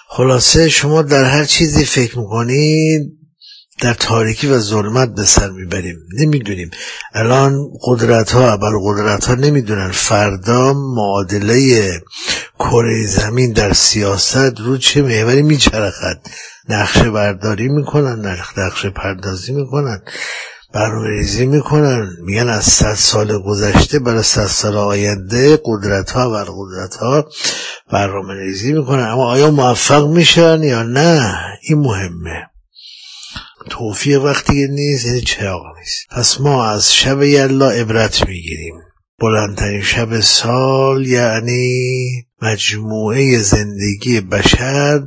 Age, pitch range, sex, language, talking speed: 50-69, 105-135 Hz, male, Persian, 105 wpm